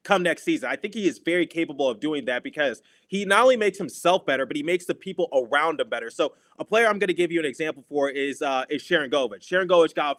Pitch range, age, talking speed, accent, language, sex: 145-175 Hz, 30-49, 275 wpm, American, English, male